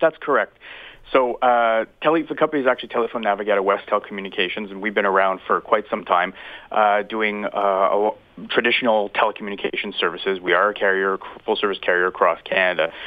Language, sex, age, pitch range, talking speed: English, male, 30-49, 95-115 Hz, 155 wpm